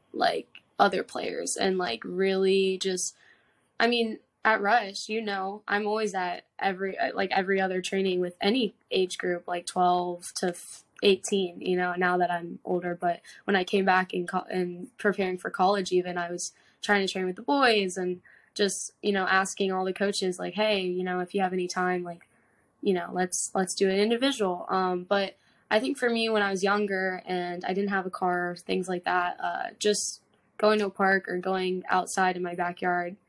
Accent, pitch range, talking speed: American, 180-195 Hz, 200 wpm